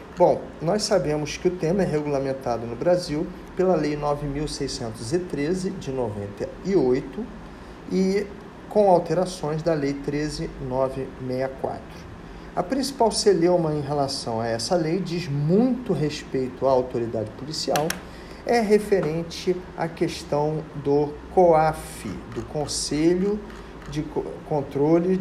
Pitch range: 140-185 Hz